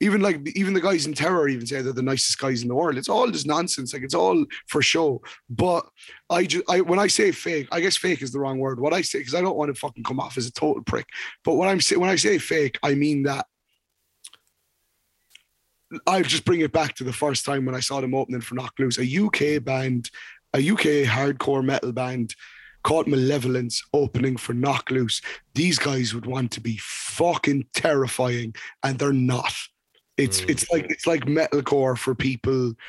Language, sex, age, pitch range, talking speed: English, male, 30-49, 125-155 Hz, 210 wpm